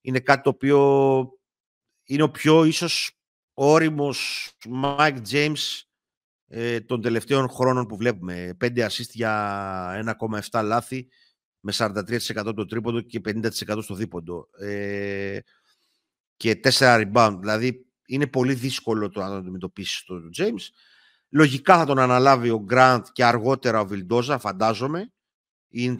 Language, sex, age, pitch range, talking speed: Greek, male, 50-69, 110-140 Hz, 120 wpm